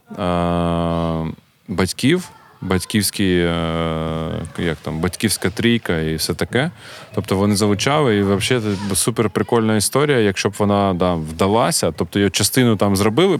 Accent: native